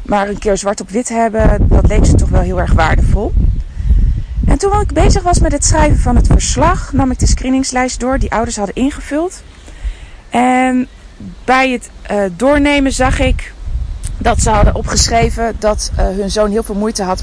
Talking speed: 190 wpm